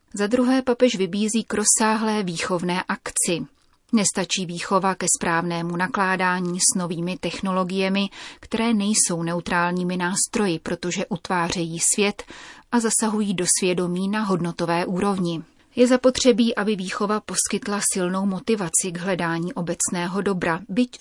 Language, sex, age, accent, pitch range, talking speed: Czech, female, 30-49, native, 175-210 Hz, 120 wpm